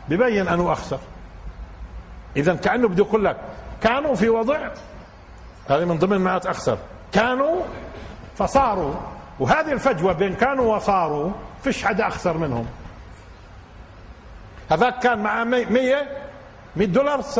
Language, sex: Arabic, male